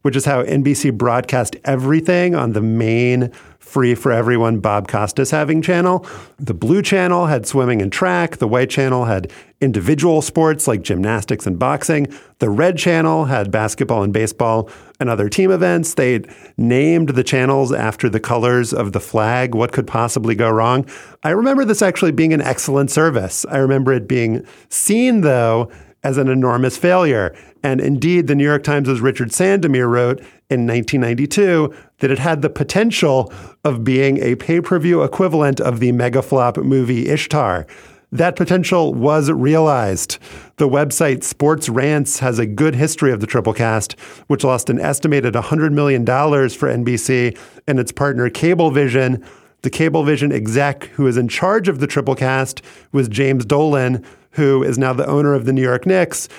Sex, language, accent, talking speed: male, English, American, 170 wpm